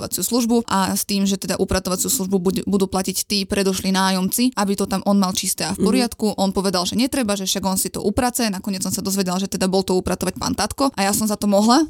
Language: Slovak